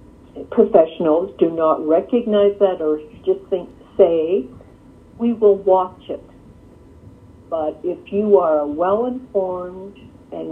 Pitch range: 155-210 Hz